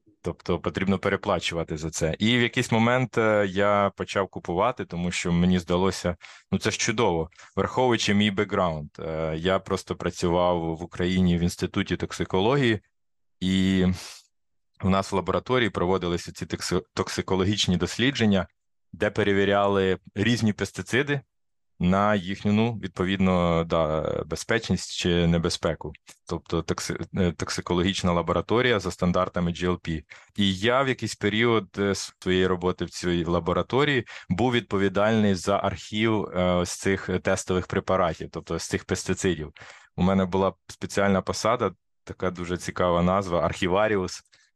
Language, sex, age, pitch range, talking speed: Ukrainian, male, 20-39, 90-100 Hz, 120 wpm